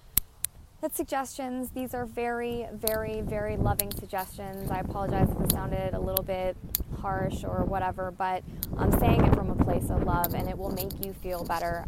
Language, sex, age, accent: English, female, 20-39, American